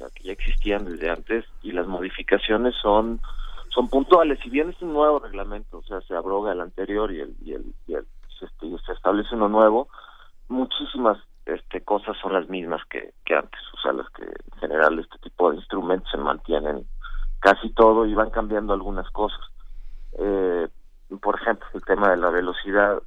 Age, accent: 50-69, Mexican